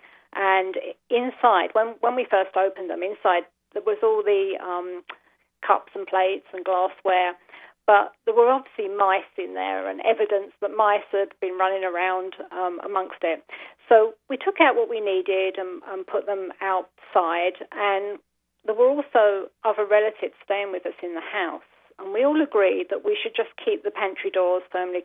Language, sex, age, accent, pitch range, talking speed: English, female, 40-59, British, 190-265 Hz, 175 wpm